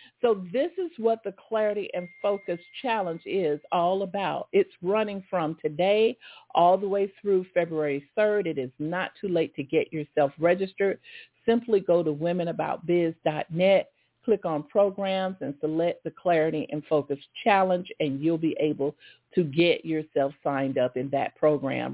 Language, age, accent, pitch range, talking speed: English, 50-69, American, 155-210 Hz, 155 wpm